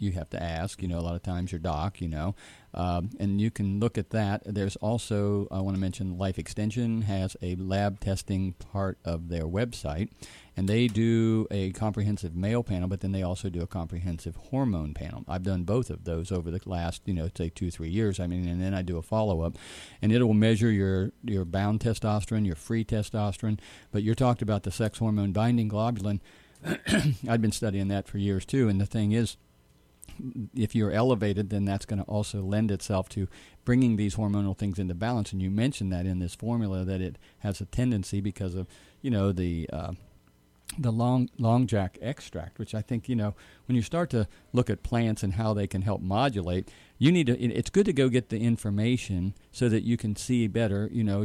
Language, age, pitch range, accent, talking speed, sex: English, 40-59, 95-115 Hz, American, 215 wpm, male